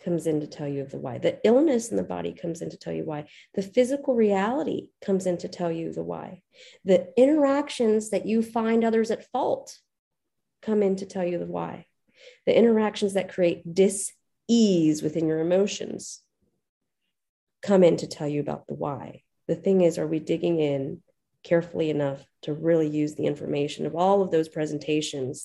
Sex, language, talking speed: female, English, 185 wpm